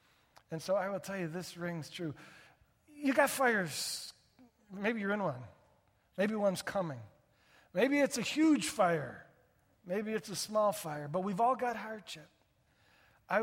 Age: 50-69